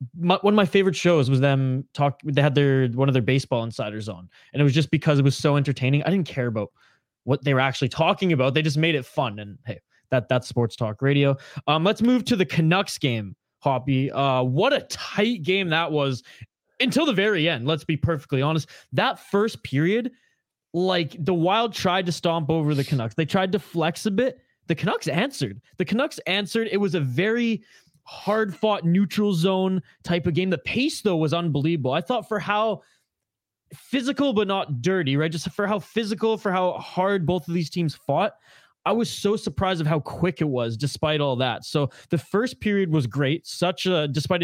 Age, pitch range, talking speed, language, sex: 20-39, 140-200 Hz, 210 wpm, English, male